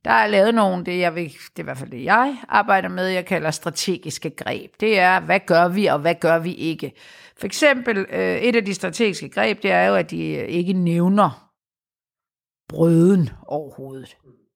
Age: 50-69